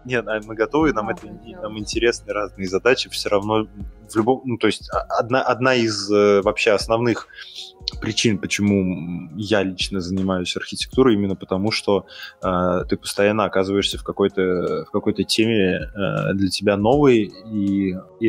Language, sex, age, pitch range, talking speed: Russian, male, 20-39, 95-110 Hz, 140 wpm